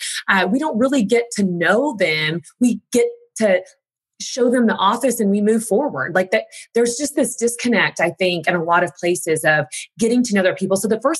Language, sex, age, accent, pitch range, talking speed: English, female, 20-39, American, 185-265 Hz, 220 wpm